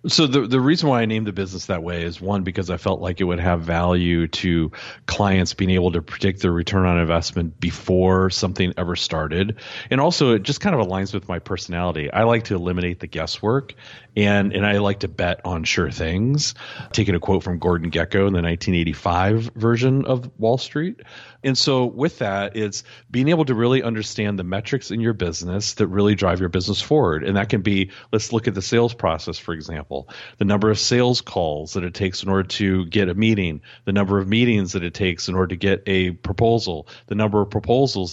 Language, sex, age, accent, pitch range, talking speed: English, male, 40-59, American, 90-115 Hz, 215 wpm